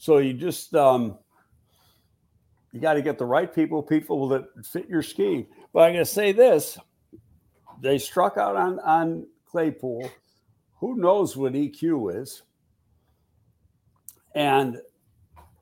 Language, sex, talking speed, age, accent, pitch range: English, male, 130 wpm, 60-79, American, 110-155 Hz